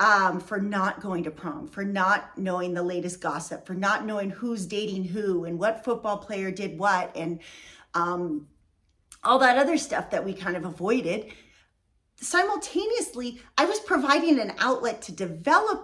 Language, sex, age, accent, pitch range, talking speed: English, female, 30-49, American, 185-260 Hz, 165 wpm